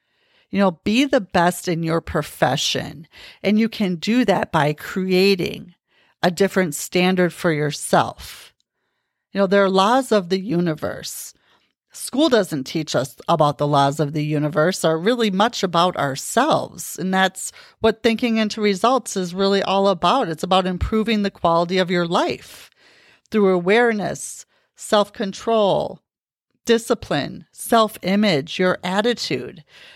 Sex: female